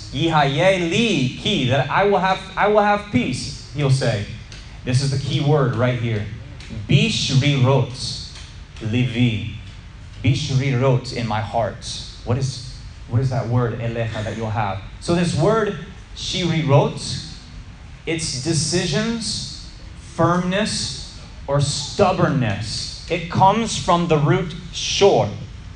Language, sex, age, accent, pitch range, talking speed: English, male, 30-49, American, 115-155 Hz, 120 wpm